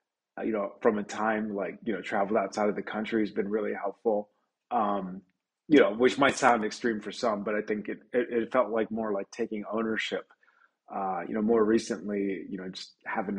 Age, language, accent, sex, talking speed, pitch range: 30-49, English, American, male, 210 wpm, 100-125 Hz